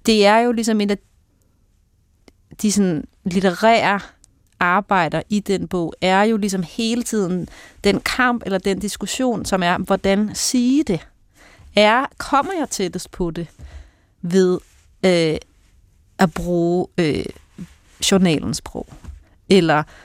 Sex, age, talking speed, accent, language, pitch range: female, 30-49, 125 wpm, native, Danish, 150-205 Hz